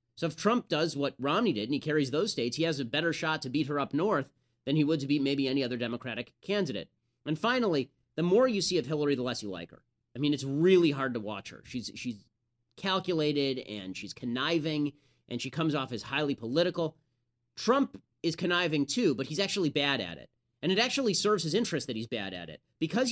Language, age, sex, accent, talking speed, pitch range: English, 30-49, male, American, 230 wpm, 125-175 Hz